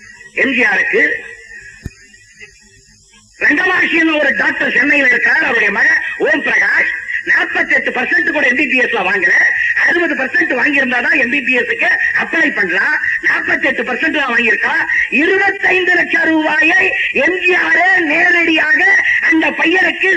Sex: female